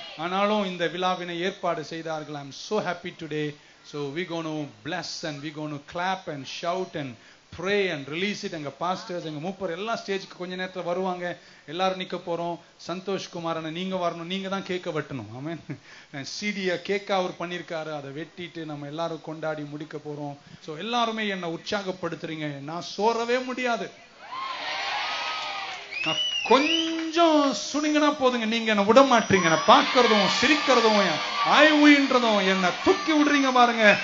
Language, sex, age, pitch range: Tamil, male, 30-49, 170-260 Hz